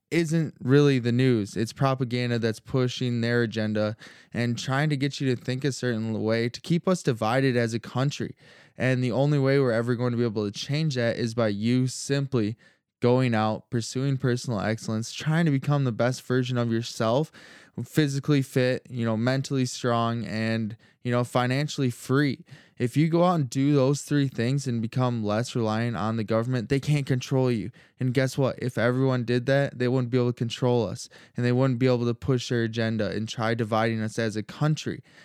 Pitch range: 115-140 Hz